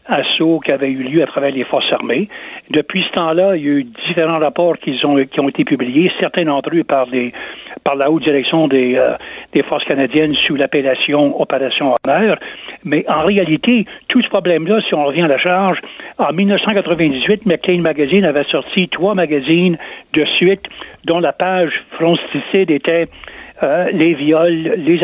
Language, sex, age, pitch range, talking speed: French, male, 60-79, 150-185 Hz, 175 wpm